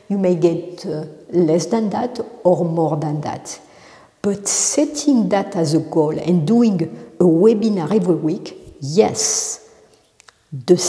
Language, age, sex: English, 60-79, female